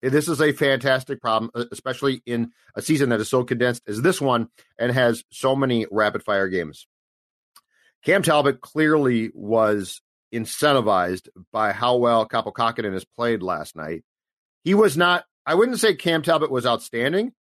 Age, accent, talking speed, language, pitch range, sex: 40-59, American, 155 wpm, English, 120-145 Hz, male